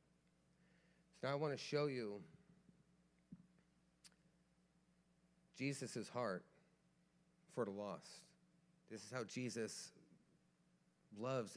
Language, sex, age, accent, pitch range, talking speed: English, male, 40-59, American, 115-175 Hz, 90 wpm